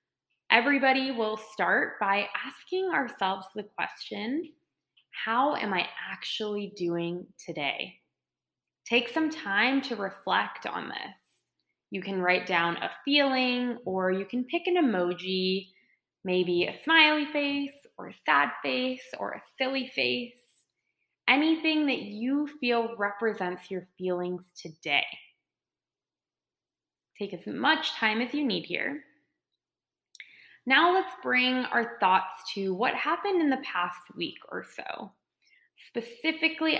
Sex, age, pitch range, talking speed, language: female, 20-39, 180-265 Hz, 125 wpm, English